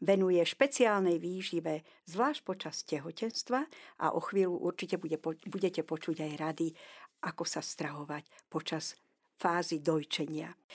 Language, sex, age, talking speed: Slovak, female, 60-79, 110 wpm